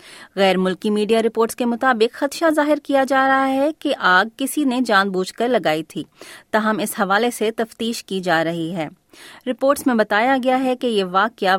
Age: 20-39